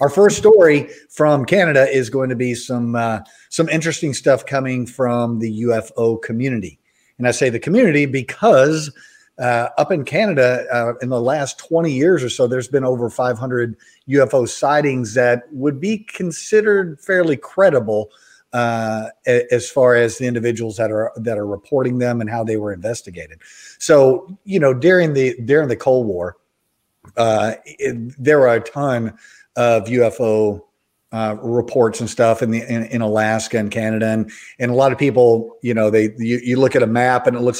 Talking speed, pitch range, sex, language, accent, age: 180 wpm, 115-140 Hz, male, English, American, 40-59